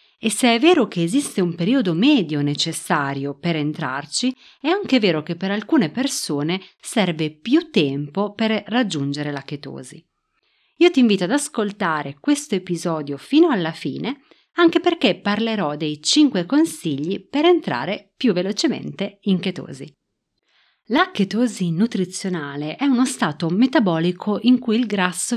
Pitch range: 160-255 Hz